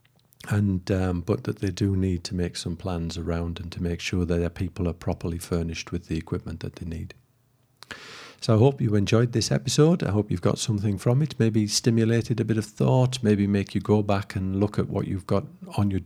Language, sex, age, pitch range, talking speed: English, male, 50-69, 95-115 Hz, 230 wpm